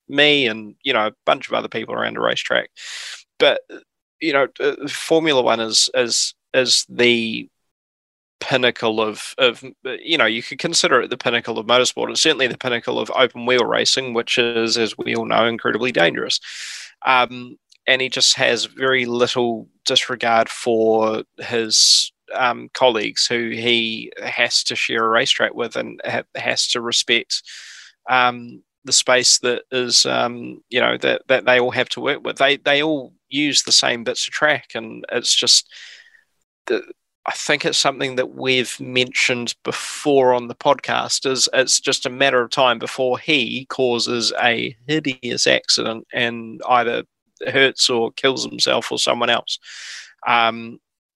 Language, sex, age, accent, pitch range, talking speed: English, male, 20-39, Australian, 115-130 Hz, 160 wpm